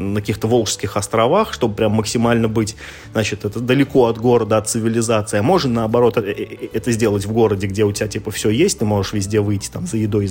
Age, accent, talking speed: 30-49, native, 210 wpm